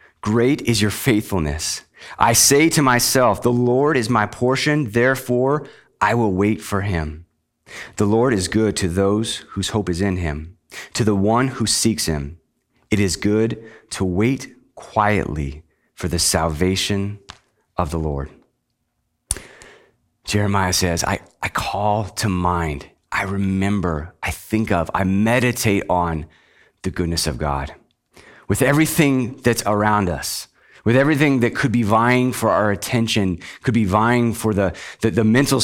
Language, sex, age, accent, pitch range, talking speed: English, male, 30-49, American, 90-120 Hz, 150 wpm